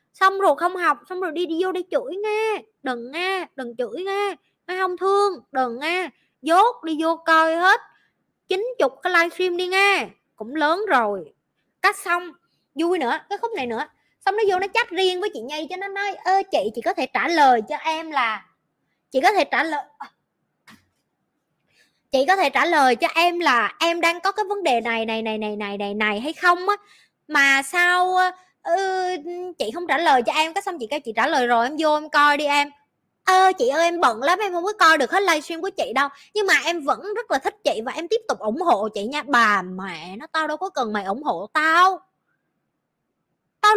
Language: Vietnamese